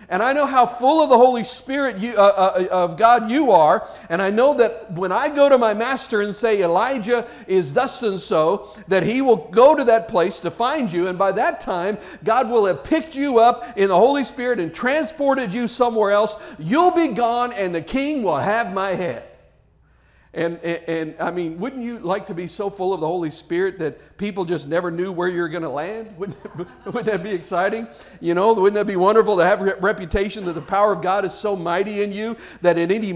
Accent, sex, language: American, male, English